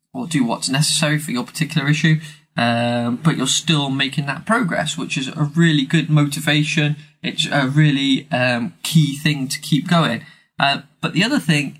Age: 20-39